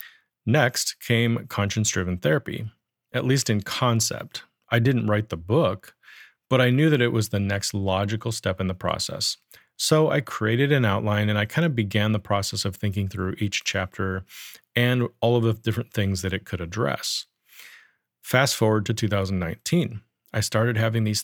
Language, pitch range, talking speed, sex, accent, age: English, 100-120 Hz, 170 wpm, male, American, 40-59